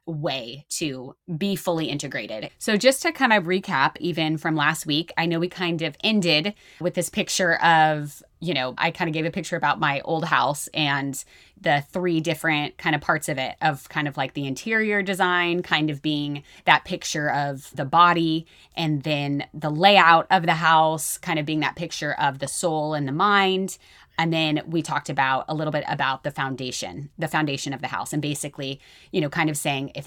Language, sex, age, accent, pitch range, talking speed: English, female, 20-39, American, 145-175 Hz, 205 wpm